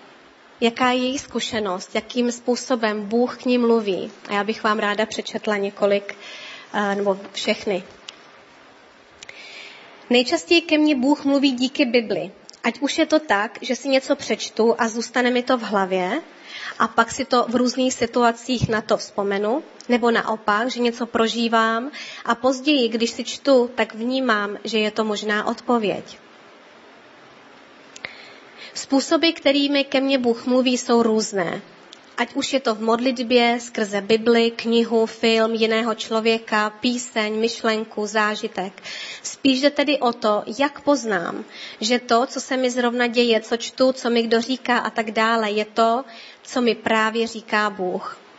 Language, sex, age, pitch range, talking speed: Czech, female, 20-39, 220-255 Hz, 150 wpm